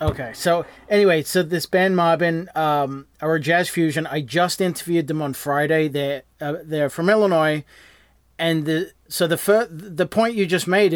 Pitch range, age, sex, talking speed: 150-180 Hz, 30-49, male, 175 wpm